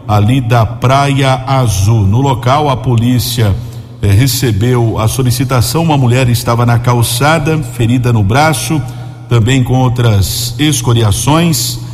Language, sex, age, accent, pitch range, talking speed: Portuguese, male, 50-69, Brazilian, 120-135 Hz, 120 wpm